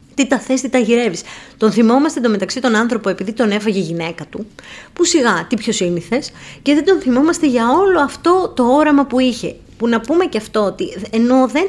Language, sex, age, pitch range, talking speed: Greek, female, 20-39, 180-255 Hz, 215 wpm